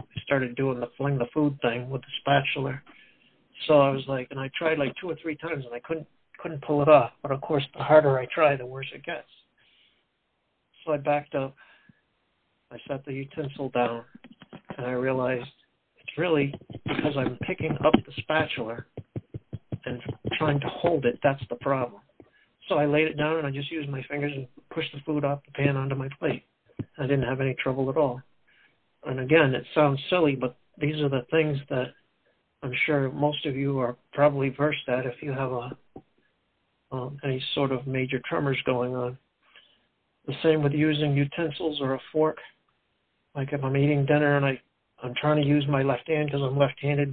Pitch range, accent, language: 130-150 Hz, American, English